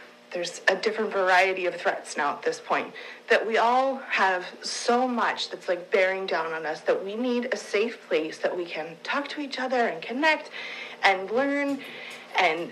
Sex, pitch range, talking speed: female, 195-260 Hz, 190 wpm